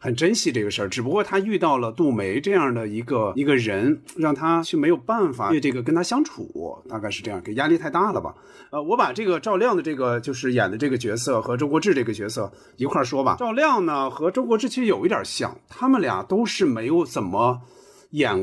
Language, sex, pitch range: Chinese, male, 120-180 Hz